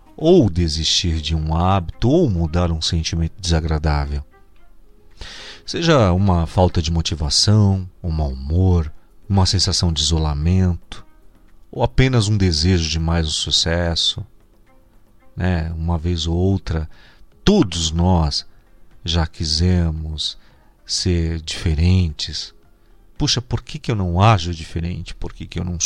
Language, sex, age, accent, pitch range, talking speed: Portuguese, male, 40-59, Brazilian, 85-110 Hz, 125 wpm